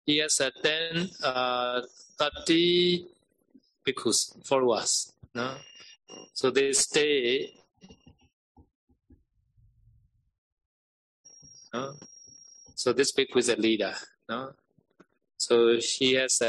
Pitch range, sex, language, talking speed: 115-140 Hz, male, Vietnamese, 90 wpm